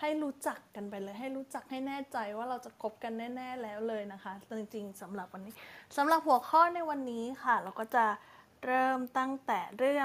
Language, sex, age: Thai, female, 20-39